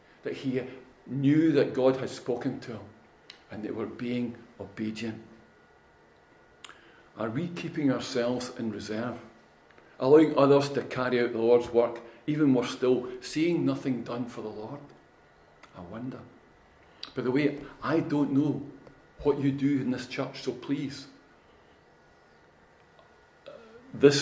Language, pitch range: English, 120-150 Hz